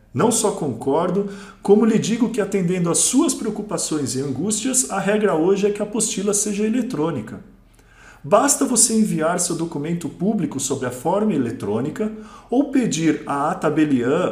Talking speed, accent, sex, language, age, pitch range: 150 wpm, Brazilian, male, Portuguese, 50-69, 150-230 Hz